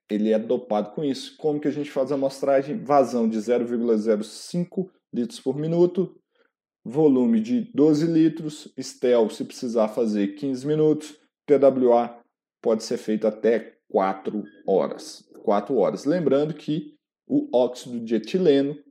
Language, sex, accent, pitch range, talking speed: Portuguese, male, Brazilian, 110-155 Hz, 135 wpm